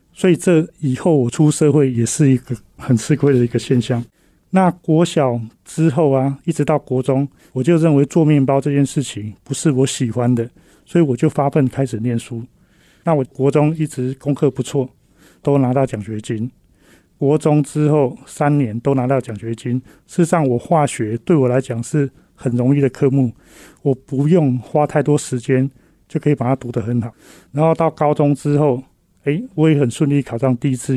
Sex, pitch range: male, 125-155 Hz